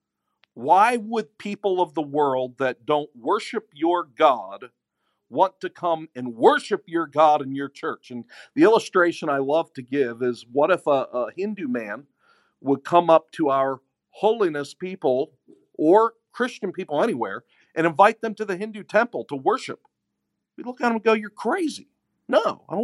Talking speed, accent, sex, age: 175 wpm, American, male, 50-69